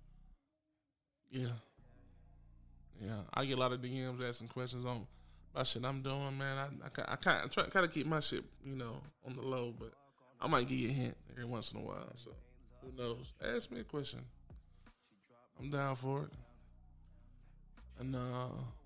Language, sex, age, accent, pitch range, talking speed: English, male, 20-39, American, 120-145 Hz, 180 wpm